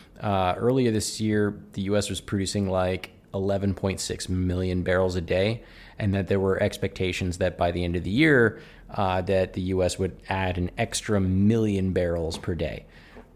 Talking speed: 170 wpm